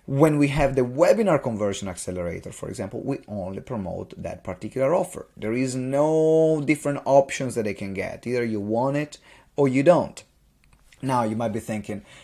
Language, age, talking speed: English, 30-49, 175 wpm